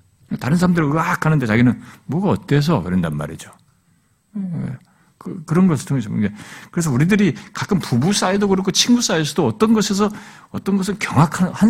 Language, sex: Korean, male